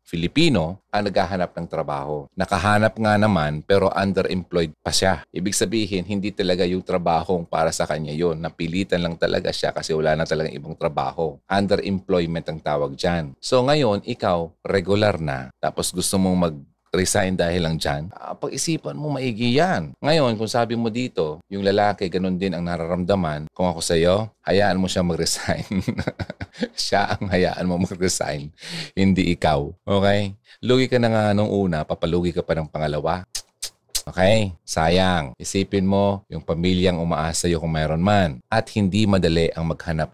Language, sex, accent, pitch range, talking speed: Filipino, male, native, 80-100 Hz, 160 wpm